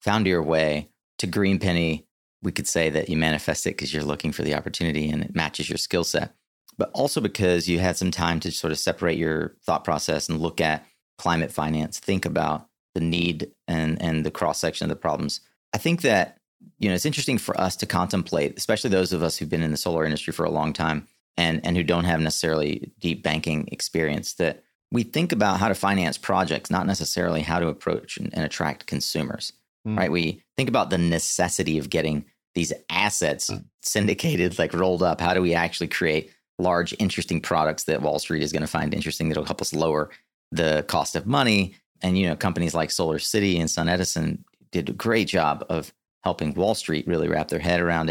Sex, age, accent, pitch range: male, 30-49, American, 80-95 Hz